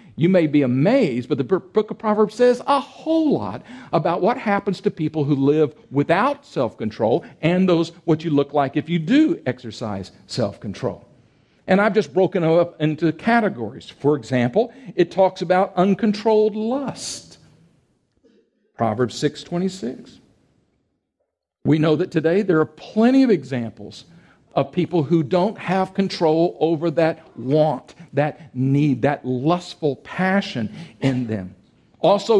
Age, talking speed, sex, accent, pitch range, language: 50-69, 140 wpm, male, American, 150-205 Hz, English